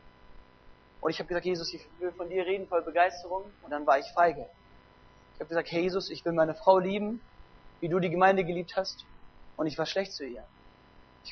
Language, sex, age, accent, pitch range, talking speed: German, male, 30-49, German, 175-225 Hz, 210 wpm